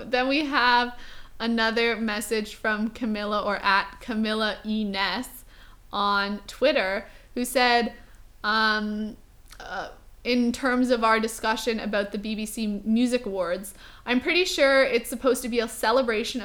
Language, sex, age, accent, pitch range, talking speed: English, female, 20-39, American, 205-245 Hz, 130 wpm